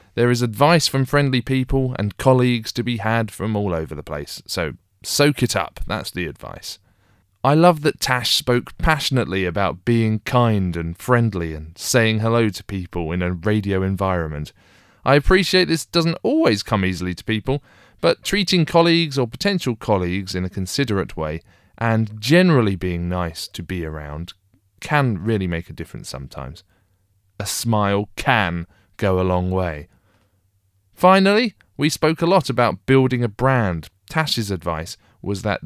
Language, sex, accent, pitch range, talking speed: English, male, British, 95-130 Hz, 160 wpm